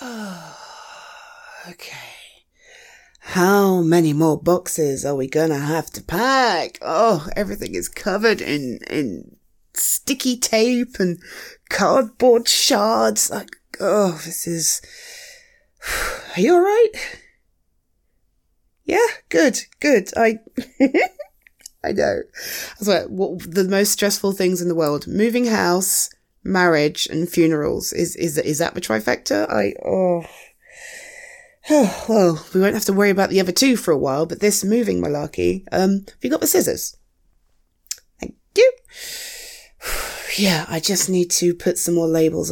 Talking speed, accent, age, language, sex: 135 wpm, British, 20-39, English, female